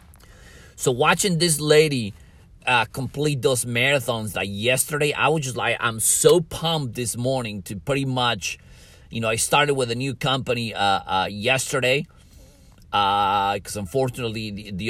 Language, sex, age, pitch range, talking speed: English, male, 30-49, 105-145 Hz, 155 wpm